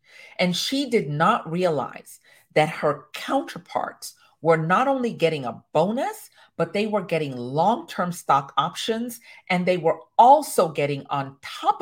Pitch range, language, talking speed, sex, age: 190-260 Hz, English, 140 wpm, female, 40-59